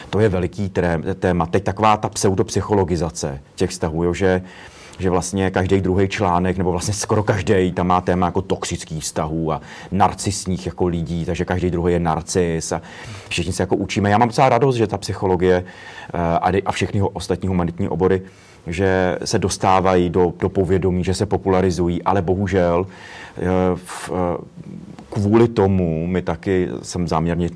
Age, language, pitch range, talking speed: 30-49, Czech, 90-100 Hz, 150 wpm